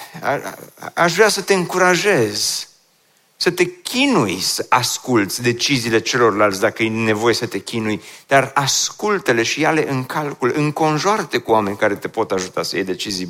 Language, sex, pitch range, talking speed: Romanian, male, 120-165 Hz, 175 wpm